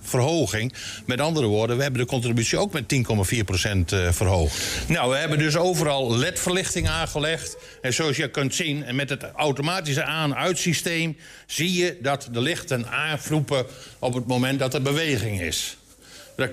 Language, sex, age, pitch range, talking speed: Dutch, male, 60-79, 115-155 Hz, 155 wpm